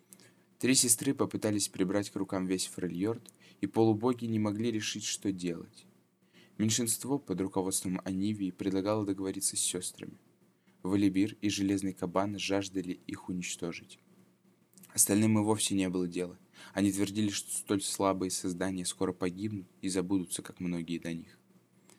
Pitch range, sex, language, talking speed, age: 90-105 Hz, male, Russian, 135 wpm, 20-39